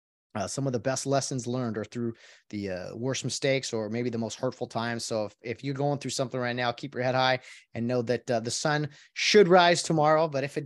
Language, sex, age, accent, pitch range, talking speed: English, male, 30-49, American, 115-145 Hz, 250 wpm